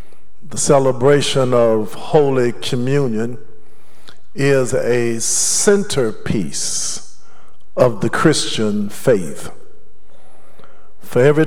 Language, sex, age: English, male, 50-69